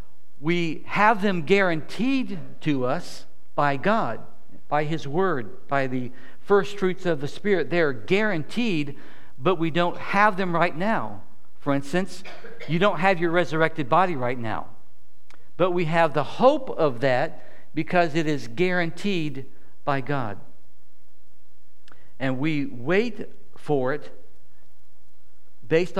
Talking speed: 130 wpm